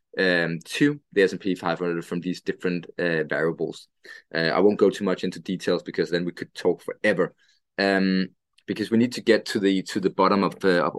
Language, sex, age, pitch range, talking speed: English, male, 20-39, 95-120 Hz, 210 wpm